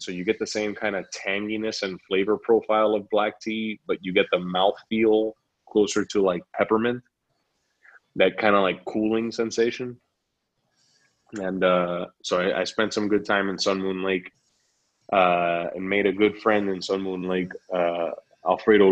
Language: English